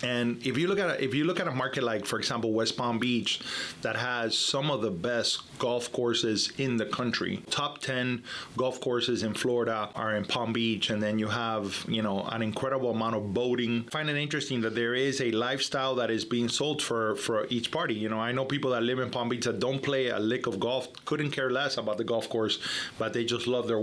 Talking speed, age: 240 wpm, 30-49